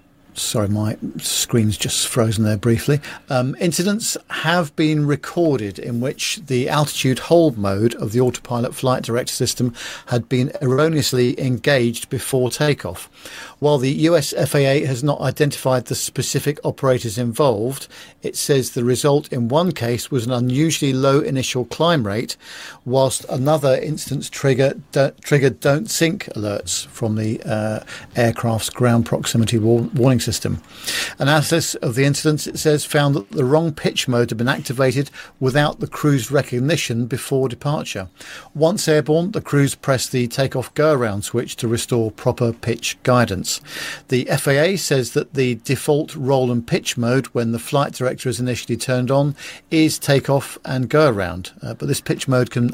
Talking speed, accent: 155 wpm, British